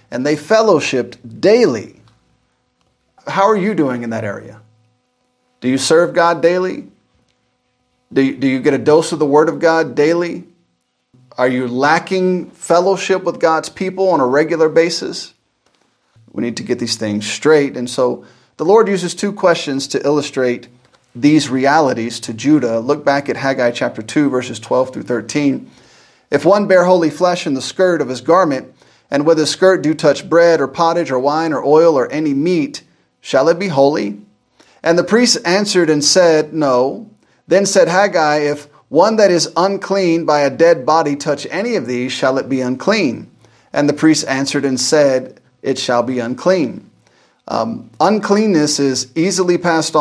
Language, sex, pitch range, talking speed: English, male, 130-175 Hz, 170 wpm